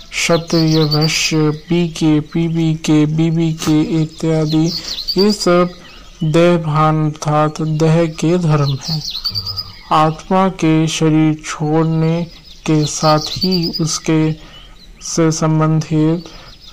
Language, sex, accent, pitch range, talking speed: Hindi, male, native, 150-165 Hz, 105 wpm